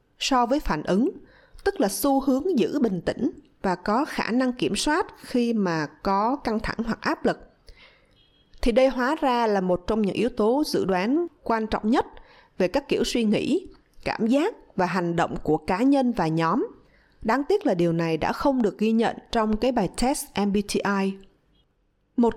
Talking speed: 190 wpm